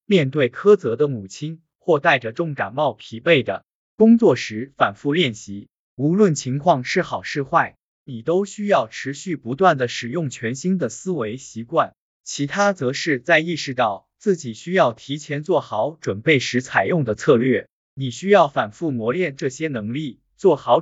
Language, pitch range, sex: Chinese, 125-175 Hz, male